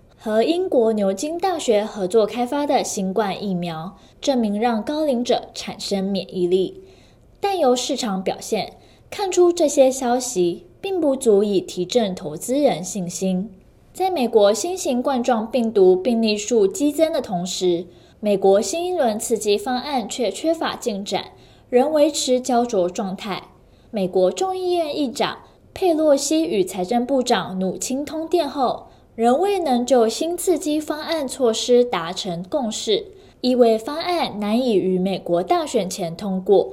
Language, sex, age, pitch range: Chinese, female, 10-29, 195-295 Hz